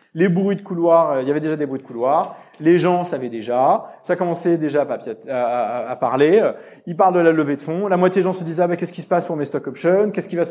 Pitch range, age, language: 140-185 Hz, 30-49, French